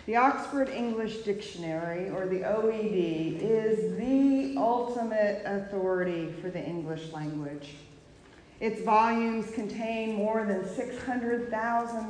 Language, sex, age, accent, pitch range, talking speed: English, female, 40-59, American, 190-235 Hz, 105 wpm